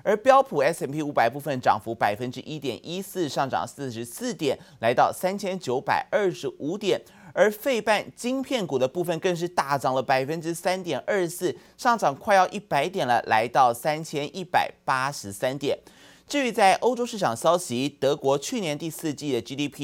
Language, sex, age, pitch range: Chinese, male, 30-49, 125-175 Hz